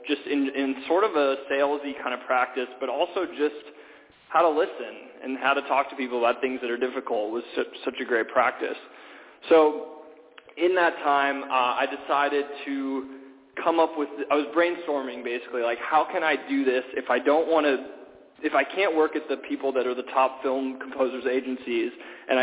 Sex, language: male, English